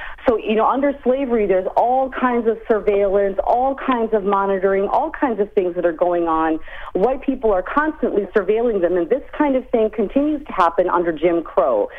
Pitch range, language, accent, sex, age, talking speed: 180-220 Hz, English, American, female, 40-59, 195 wpm